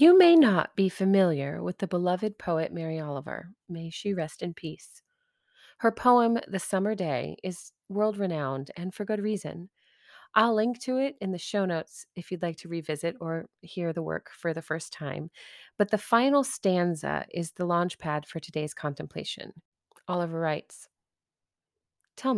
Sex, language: female, English